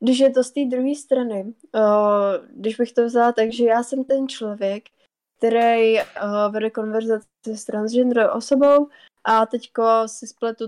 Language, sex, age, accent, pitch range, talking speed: Czech, female, 20-39, native, 215-240 Hz, 150 wpm